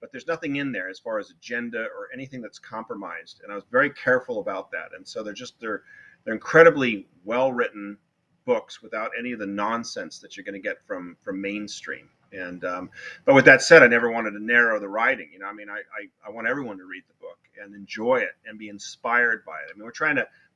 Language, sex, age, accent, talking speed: English, male, 30-49, American, 235 wpm